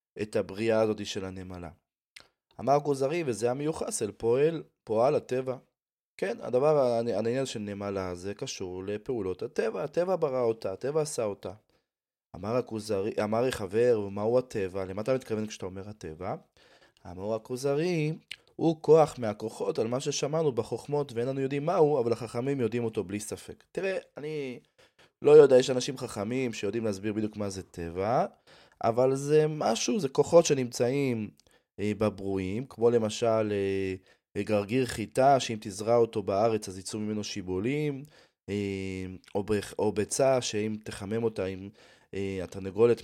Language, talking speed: Hebrew, 140 wpm